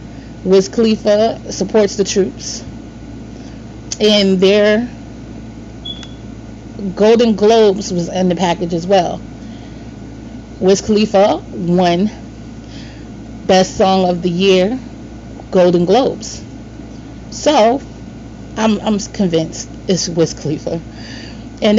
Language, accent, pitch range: English, American, 165-210 Hz